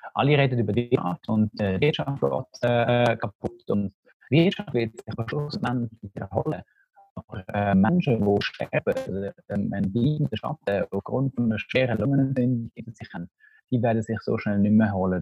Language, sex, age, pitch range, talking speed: German, male, 30-49, 105-130 Hz, 185 wpm